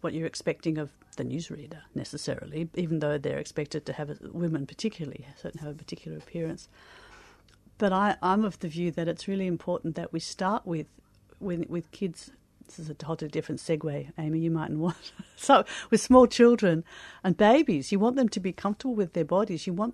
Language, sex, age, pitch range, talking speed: English, female, 50-69, 155-190 Hz, 195 wpm